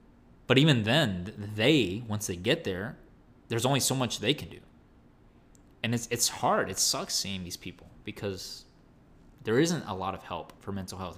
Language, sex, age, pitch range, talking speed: English, male, 20-39, 90-120 Hz, 185 wpm